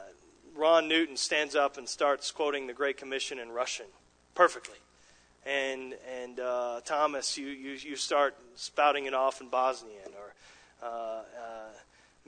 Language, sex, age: English, male, 40-59